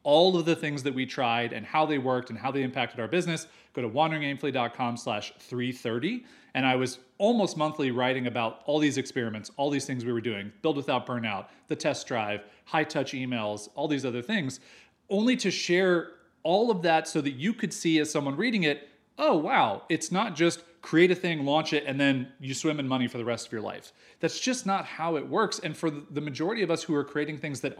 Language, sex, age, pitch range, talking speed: English, male, 30-49, 130-170 Hz, 225 wpm